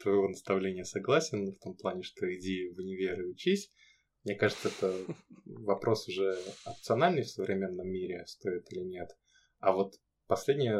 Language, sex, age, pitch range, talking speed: Russian, male, 20-39, 95-110 Hz, 150 wpm